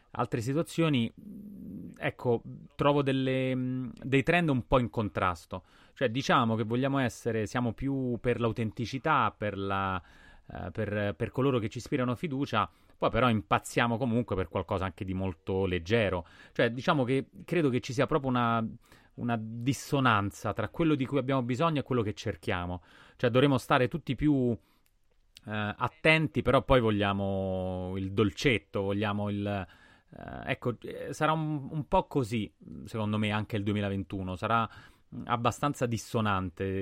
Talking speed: 140 wpm